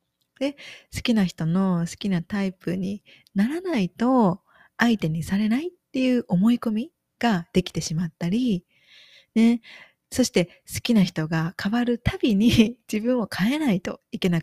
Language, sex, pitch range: Japanese, female, 175-230 Hz